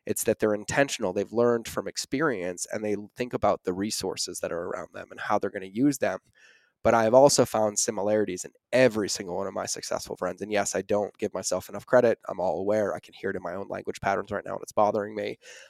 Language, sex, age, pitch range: English, male, 20-39, 100-115 Hz